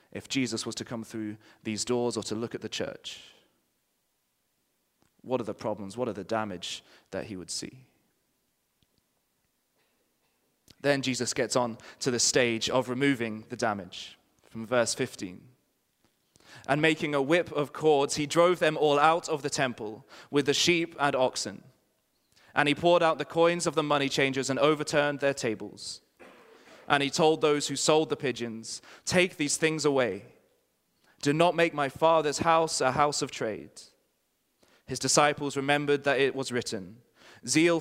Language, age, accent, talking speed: English, 20-39, British, 165 wpm